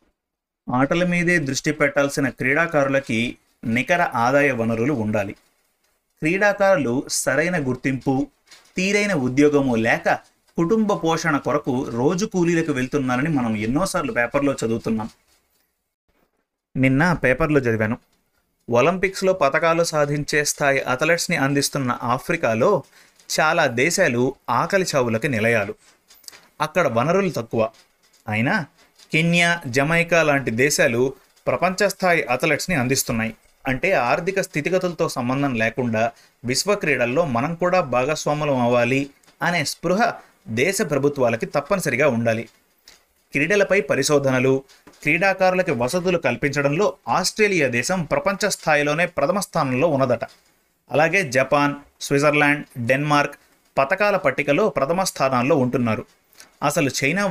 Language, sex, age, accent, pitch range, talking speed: Telugu, male, 30-49, native, 130-175 Hz, 95 wpm